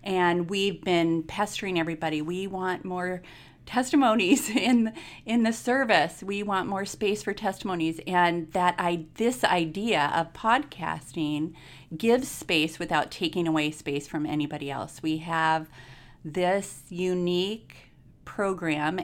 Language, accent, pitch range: English, American, 160-195 Hz